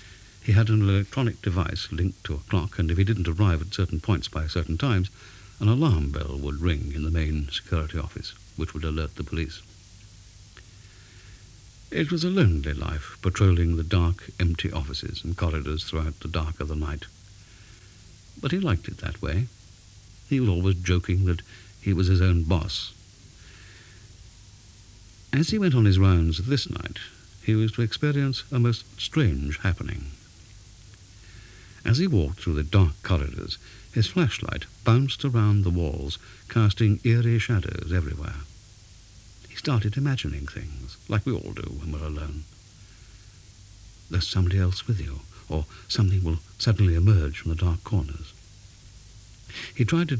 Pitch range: 85-105 Hz